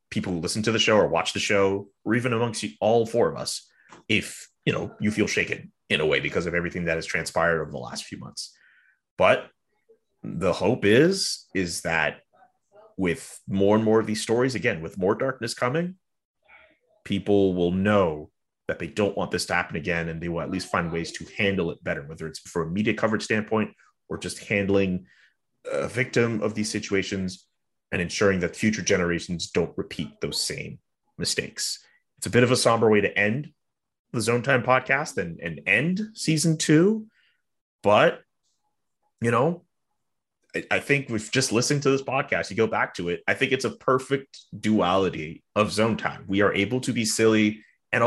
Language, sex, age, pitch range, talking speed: English, male, 30-49, 95-130 Hz, 190 wpm